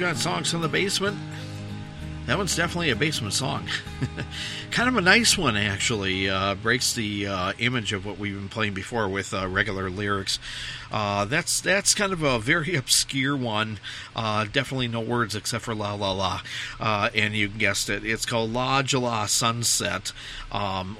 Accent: American